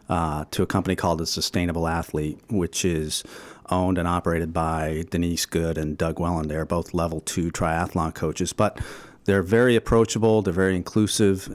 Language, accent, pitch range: English, American, 80-95 Hz